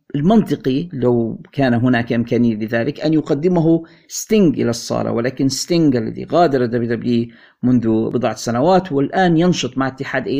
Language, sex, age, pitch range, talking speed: Arabic, male, 50-69, 125-160 Hz, 135 wpm